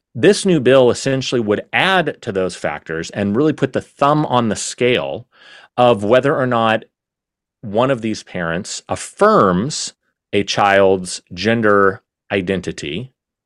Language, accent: English, American